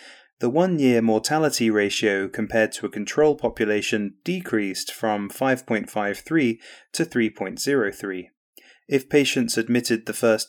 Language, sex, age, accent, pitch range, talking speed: English, male, 30-49, British, 105-125 Hz, 110 wpm